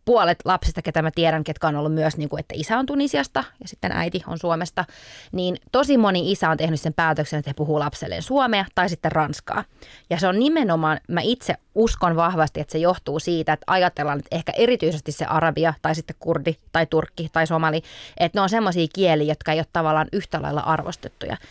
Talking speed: 200 wpm